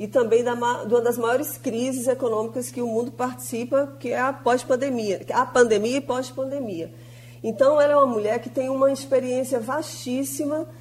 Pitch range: 185-250 Hz